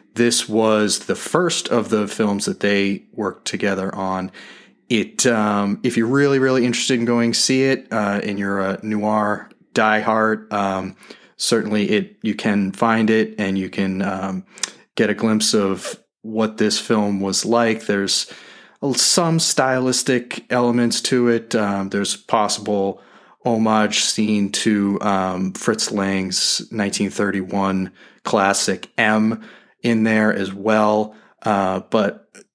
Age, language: 30-49, English